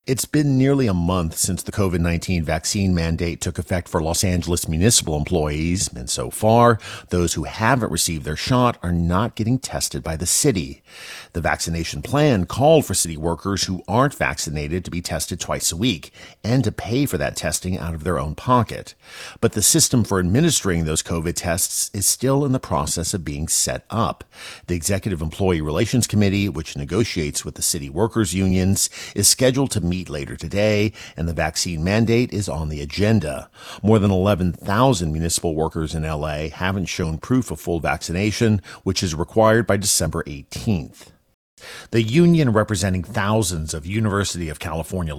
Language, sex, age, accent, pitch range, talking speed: English, male, 50-69, American, 85-115 Hz, 175 wpm